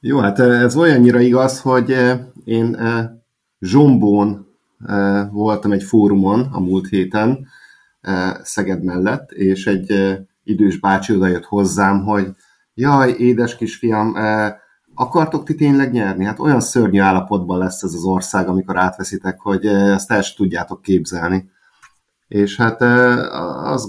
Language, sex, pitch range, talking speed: Hungarian, male, 95-115 Hz, 125 wpm